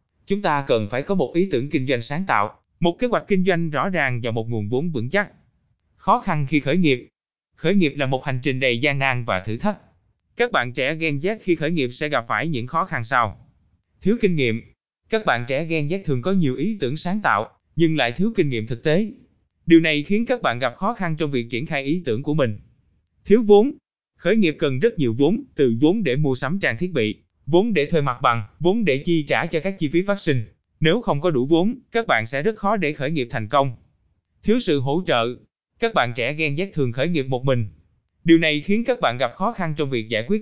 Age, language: 20-39, Vietnamese